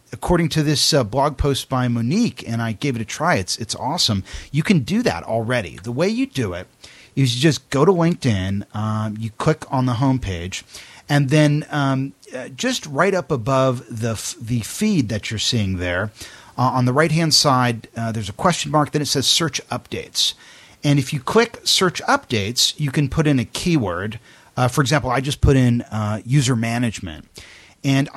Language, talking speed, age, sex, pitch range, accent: English, 195 wpm, 40-59, male, 115-150 Hz, American